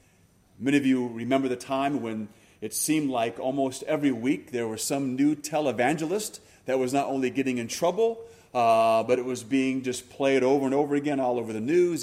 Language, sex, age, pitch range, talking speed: English, male, 30-49, 110-145 Hz, 200 wpm